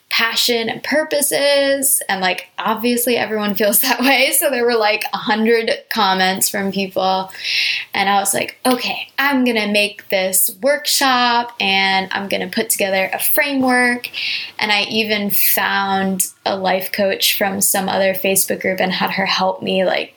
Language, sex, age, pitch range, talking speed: English, female, 20-39, 190-225 Hz, 165 wpm